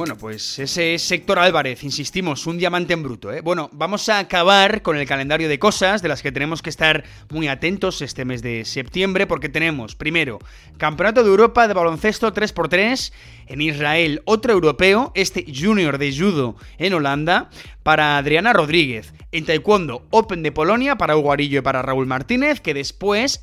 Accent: Spanish